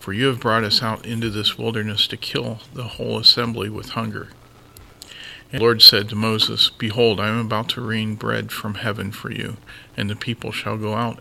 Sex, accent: male, American